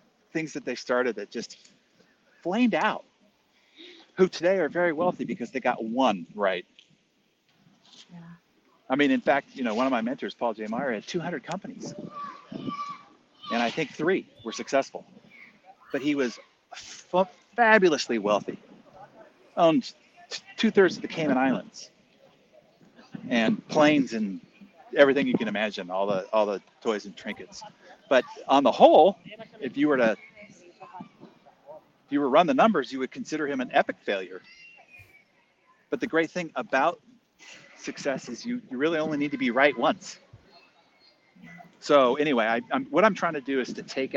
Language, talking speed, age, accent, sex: English, 160 wpm, 40-59, American, male